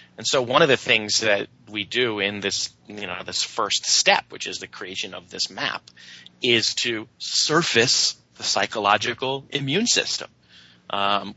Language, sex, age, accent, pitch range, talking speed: English, male, 30-49, American, 105-125 Hz, 165 wpm